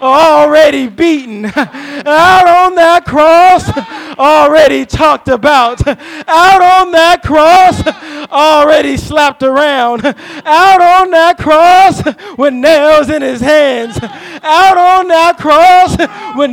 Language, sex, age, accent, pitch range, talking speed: English, male, 20-39, American, 290-345 Hz, 110 wpm